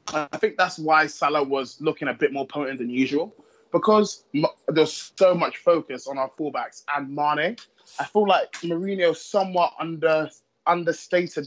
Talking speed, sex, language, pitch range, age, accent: 155 wpm, male, English, 145-180 Hz, 20-39, British